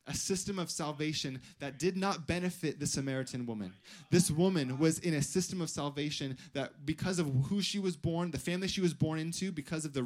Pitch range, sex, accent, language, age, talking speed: 150-200 Hz, male, American, English, 20-39, 210 wpm